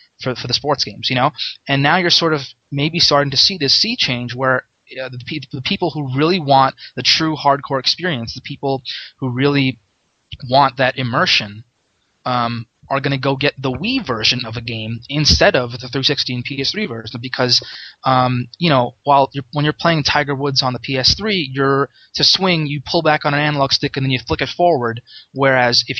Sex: male